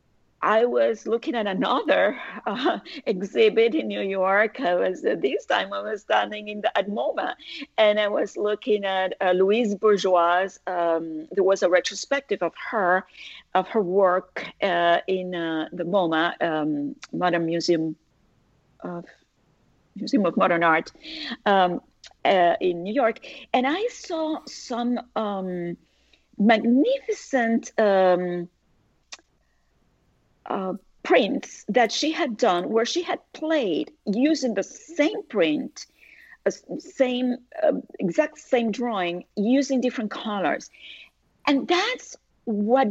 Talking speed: 125 wpm